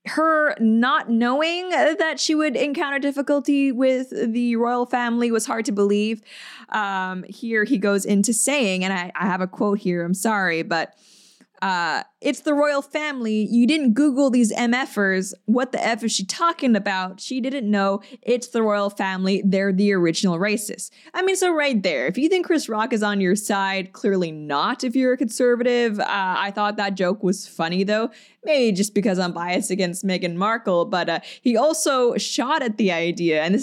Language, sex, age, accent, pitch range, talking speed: English, female, 20-39, American, 190-250 Hz, 190 wpm